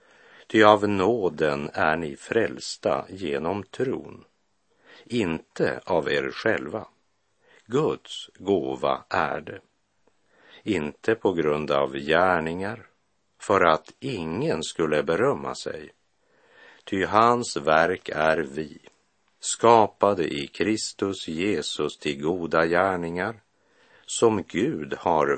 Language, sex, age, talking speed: Swedish, male, 60-79, 100 wpm